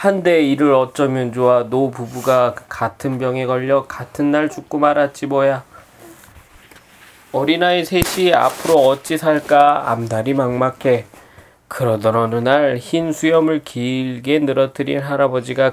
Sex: male